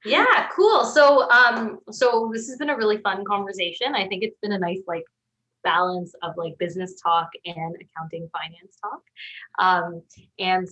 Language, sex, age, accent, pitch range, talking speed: English, female, 20-39, American, 170-215 Hz, 170 wpm